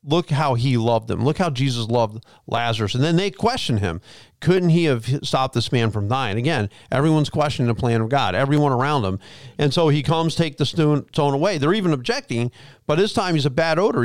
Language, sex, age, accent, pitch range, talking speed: English, male, 40-59, American, 125-160 Hz, 220 wpm